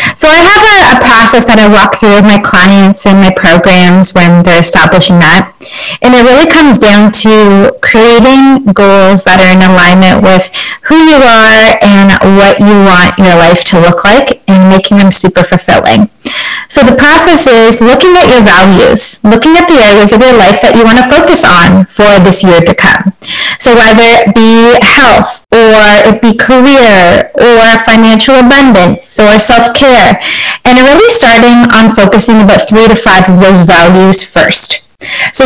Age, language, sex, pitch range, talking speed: 20-39, English, female, 195-250 Hz, 175 wpm